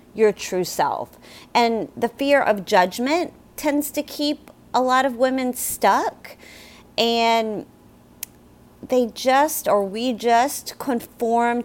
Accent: American